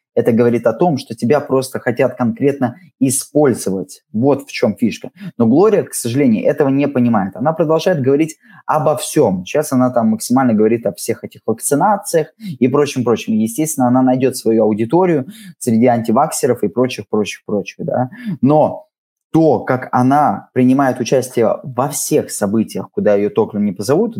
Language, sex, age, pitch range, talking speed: Russian, male, 20-39, 115-155 Hz, 150 wpm